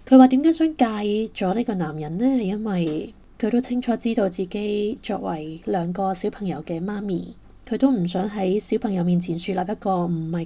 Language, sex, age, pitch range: Chinese, female, 20-39, 180-225 Hz